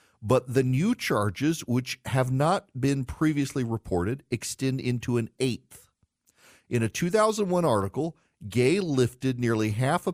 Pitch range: 115-155 Hz